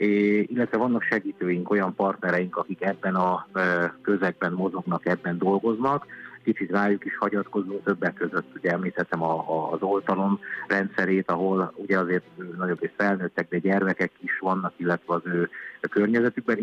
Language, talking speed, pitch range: Hungarian, 140 wpm, 85-100 Hz